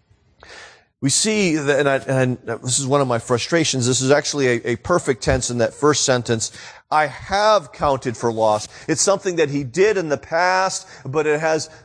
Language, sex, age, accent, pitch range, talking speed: English, male, 40-59, American, 125-175 Hz, 200 wpm